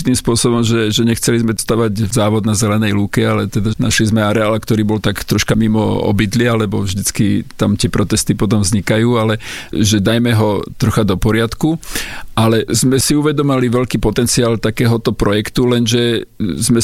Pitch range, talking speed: 110-120 Hz, 165 wpm